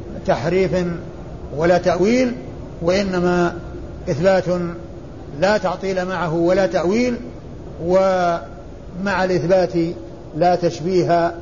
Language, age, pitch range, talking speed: Arabic, 50-69, 170-195 Hz, 75 wpm